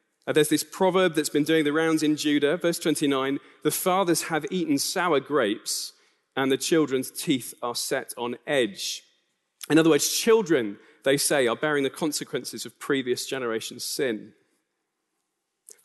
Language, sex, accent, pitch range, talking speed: English, male, British, 140-210 Hz, 155 wpm